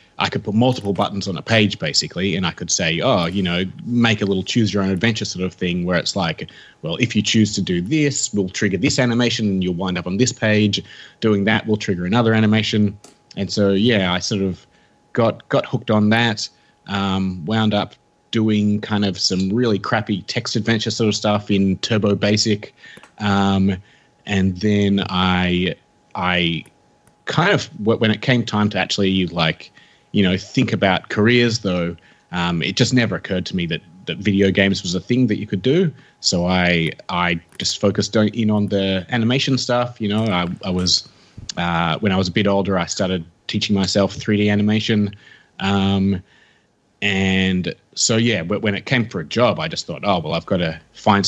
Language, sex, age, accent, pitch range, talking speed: English, male, 30-49, Australian, 95-110 Hz, 190 wpm